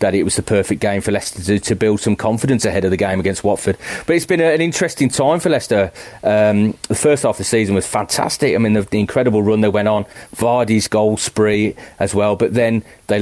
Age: 30-49